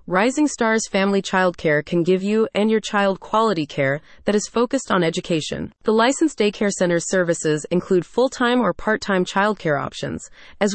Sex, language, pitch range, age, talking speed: female, English, 170-225 Hz, 30-49, 175 wpm